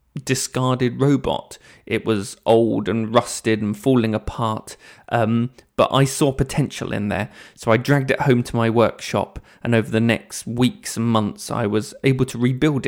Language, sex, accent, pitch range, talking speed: English, male, British, 115-135 Hz, 170 wpm